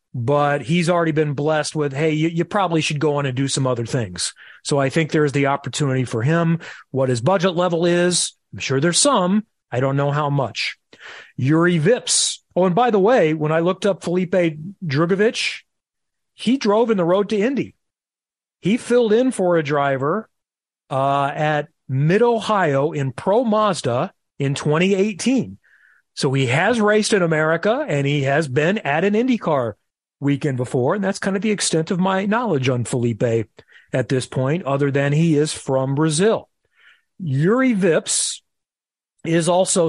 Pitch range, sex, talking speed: 140-180 Hz, male, 170 wpm